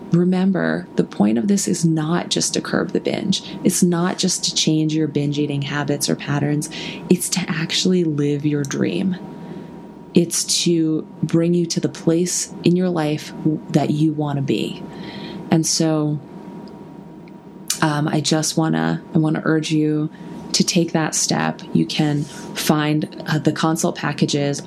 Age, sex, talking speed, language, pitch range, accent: 20-39, female, 160 wpm, English, 150-185 Hz, American